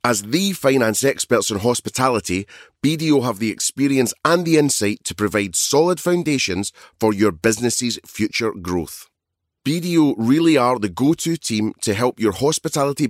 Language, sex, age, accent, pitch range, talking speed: English, male, 30-49, British, 105-145 Hz, 145 wpm